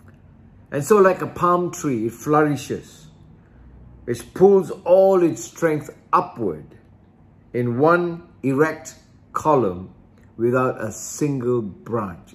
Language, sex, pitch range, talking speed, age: English, male, 105-130 Hz, 105 wpm, 60-79